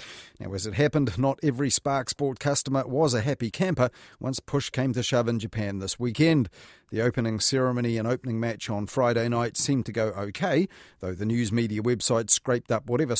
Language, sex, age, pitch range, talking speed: English, male, 40-59, 115-150 Hz, 195 wpm